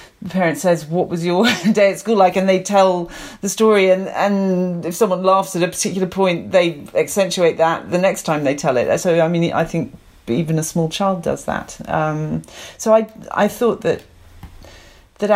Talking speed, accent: 200 wpm, British